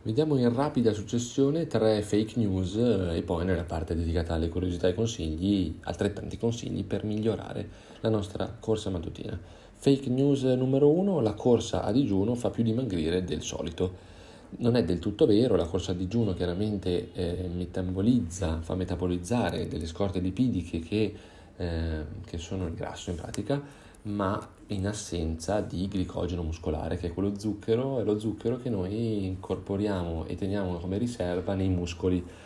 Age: 30-49